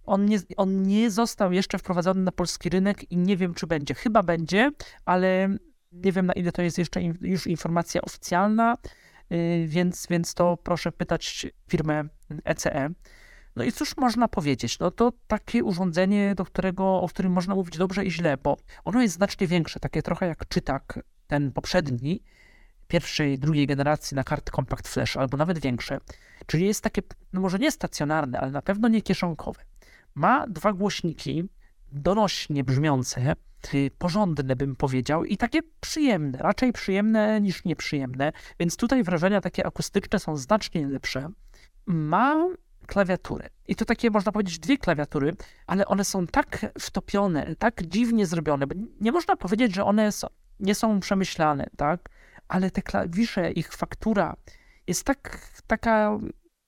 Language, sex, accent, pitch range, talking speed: Polish, male, native, 155-210 Hz, 155 wpm